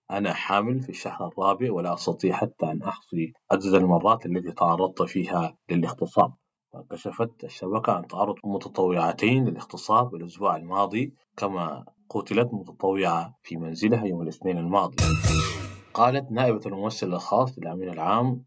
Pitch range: 85-110 Hz